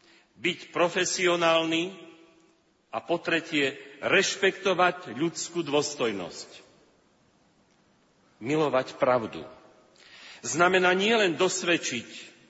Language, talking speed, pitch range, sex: Slovak, 60 wpm, 145-185 Hz, male